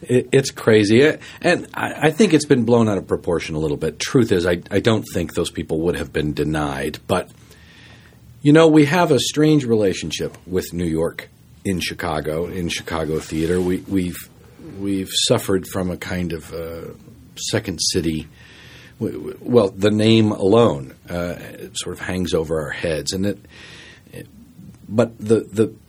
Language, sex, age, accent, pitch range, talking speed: English, male, 50-69, American, 85-115 Hz, 160 wpm